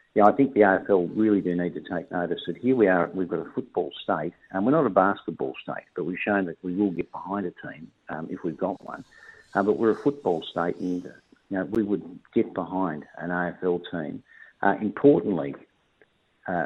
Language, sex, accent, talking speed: English, male, Australian, 215 wpm